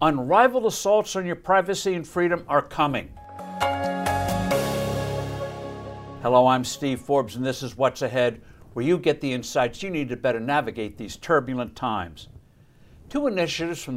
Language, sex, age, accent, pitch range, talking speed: English, male, 60-79, American, 125-170 Hz, 145 wpm